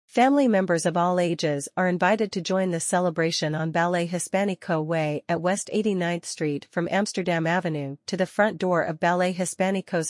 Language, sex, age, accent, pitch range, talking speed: English, female, 40-59, American, 165-200 Hz, 170 wpm